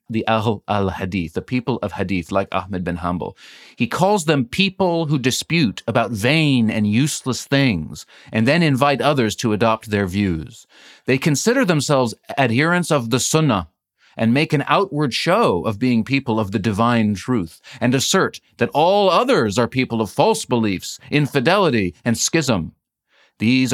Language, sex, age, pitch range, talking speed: English, male, 40-59, 105-135 Hz, 160 wpm